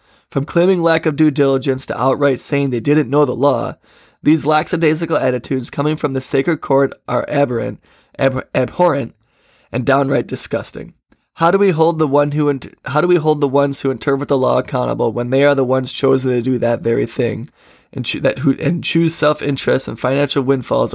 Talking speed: 200 wpm